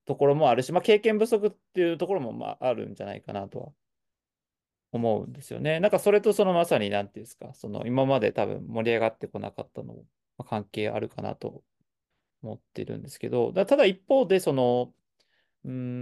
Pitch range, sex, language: 125-205 Hz, male, Japanese